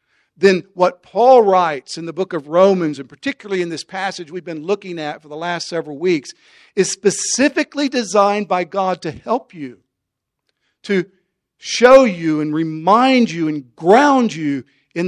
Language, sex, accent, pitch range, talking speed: English, male, American, 145-185 Hz, 165 wpm